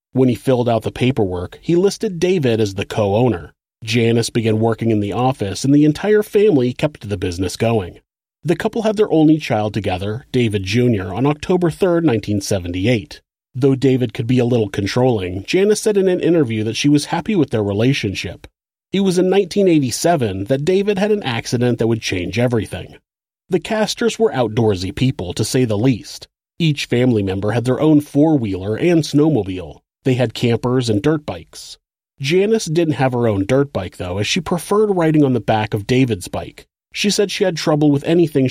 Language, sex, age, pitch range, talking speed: English, male, 30-49, 110-155 Hz, 185 wpm